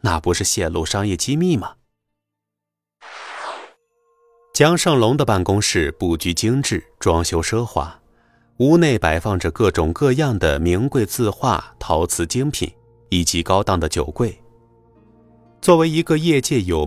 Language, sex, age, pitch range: Chinese, male, 30-49, 85-130 Hz